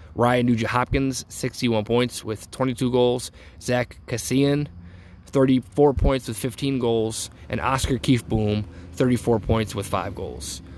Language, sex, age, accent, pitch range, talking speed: English, male, 20-39, American, 95-115 Hz, 130 wpm